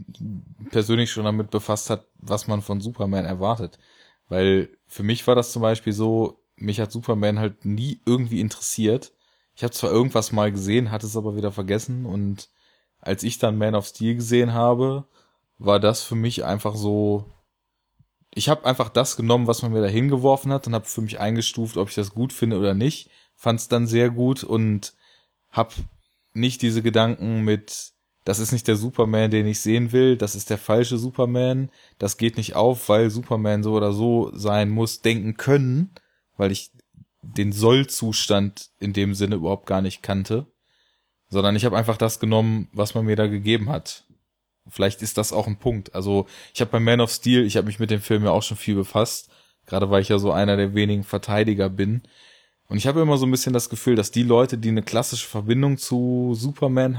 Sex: male